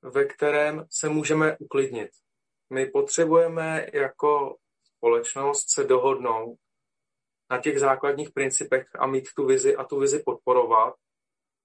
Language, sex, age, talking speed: Czech, male, 30-49, 120 wpm